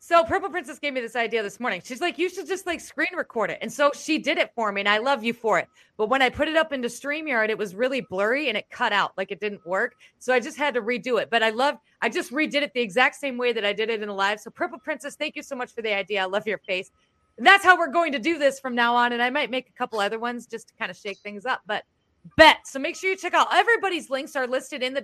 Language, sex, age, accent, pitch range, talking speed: English, female, 30-49, American, 225-315 Hz, 310 wpm